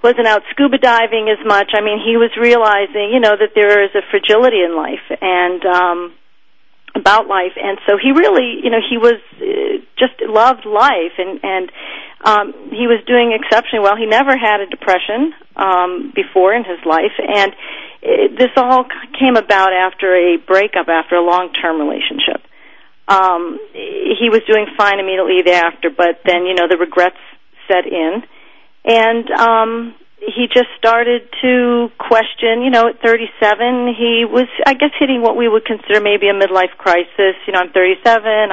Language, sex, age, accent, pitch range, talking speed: English, female, 40-59, American, 180-240 Hz, 170 wpm